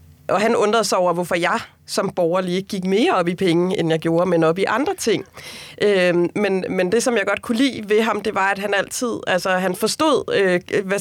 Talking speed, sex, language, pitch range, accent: 240 wpm, female, Danish, 175-210 Hz, native